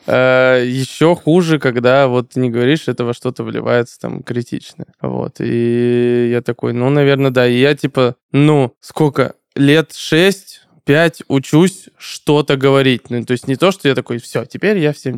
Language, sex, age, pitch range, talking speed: Russian, male, 20-39, 125-140 Hz, 160 wpm